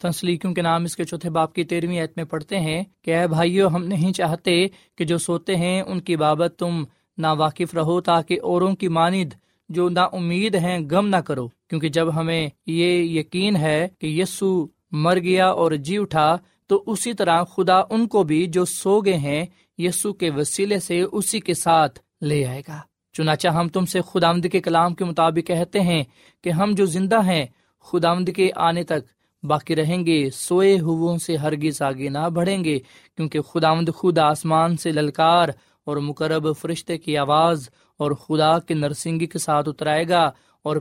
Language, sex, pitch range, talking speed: Urdu, male, 155-180 Hz, 180 wpm